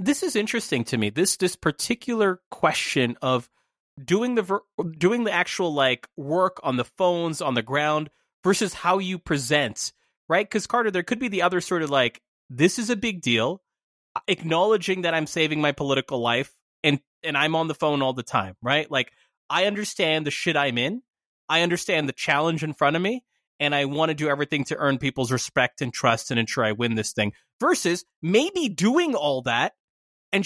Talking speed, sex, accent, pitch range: 195 wpm, male, American, 140-180 Hz